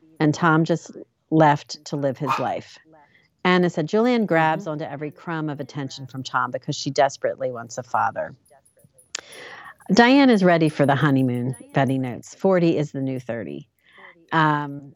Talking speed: 155 wpm